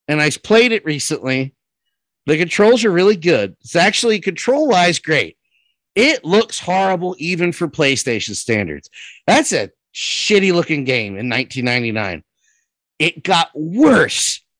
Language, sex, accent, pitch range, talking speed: English, male, American, 140-210 Hz, 125 wpm